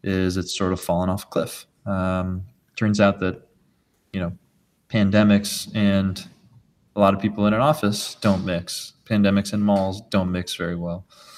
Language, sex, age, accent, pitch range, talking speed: English, male, 20-39, American, 90-105 Hz, 165 wpm